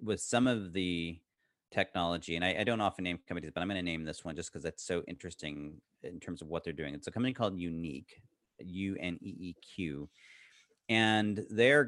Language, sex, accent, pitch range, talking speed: English, male, American, 85-105 Hz, 190 wpm